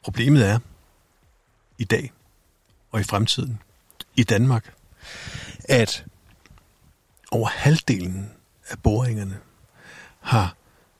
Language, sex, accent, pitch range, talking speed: Danish, male, native, 100-125 Hz, 80 wpm